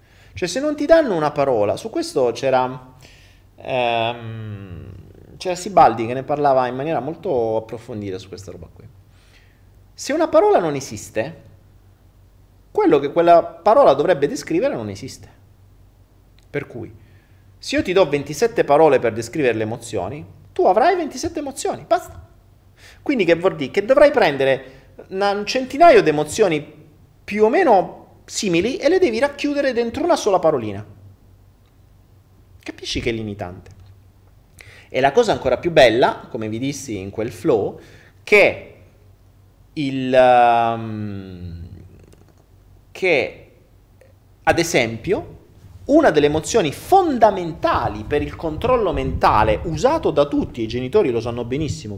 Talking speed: 130 wpm